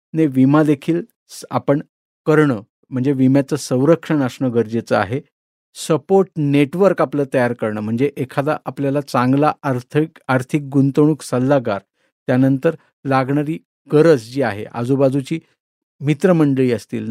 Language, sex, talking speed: Marathi, male, 110 wpm